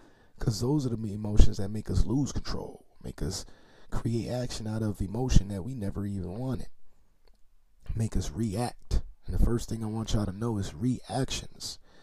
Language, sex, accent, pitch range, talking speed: English, male, American, 95-125 Hz, 180 wpm